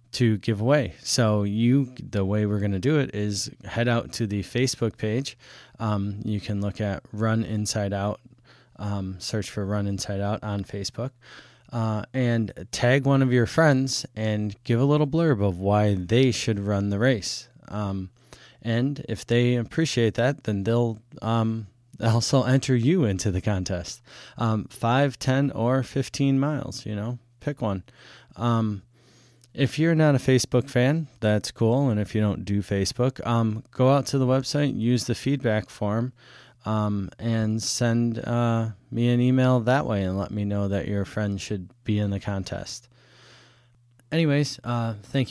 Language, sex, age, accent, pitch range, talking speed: English, male, 20-39, American, 105-130 Hz, 170 wpm